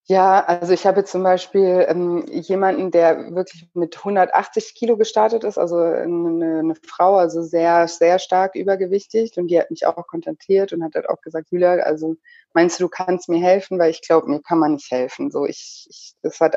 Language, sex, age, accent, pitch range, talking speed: German, female, 30-49, German, 160-185 Hz, 200 wpm